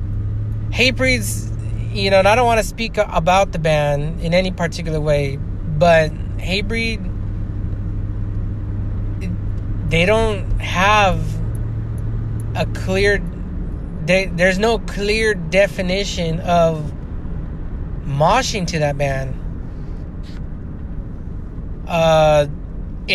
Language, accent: English, American